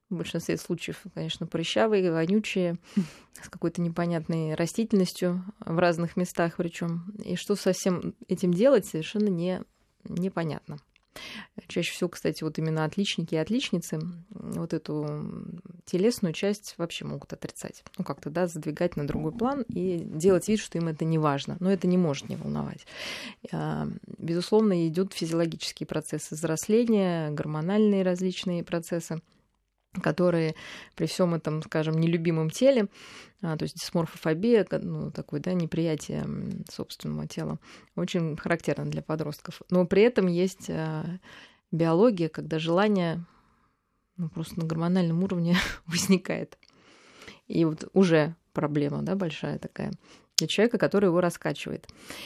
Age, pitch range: 20-39, 160-190 Hz